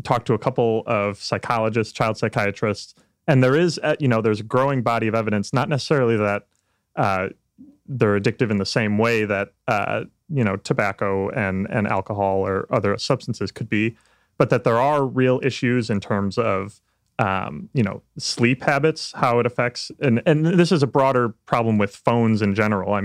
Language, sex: English, male